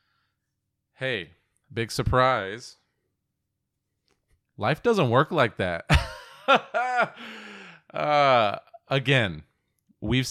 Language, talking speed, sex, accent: English, 65 wpm, male, American